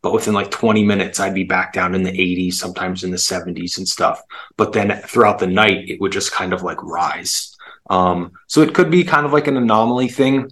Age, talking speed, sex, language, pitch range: 20-39, 235 wpm, male, English, 95-115 Hz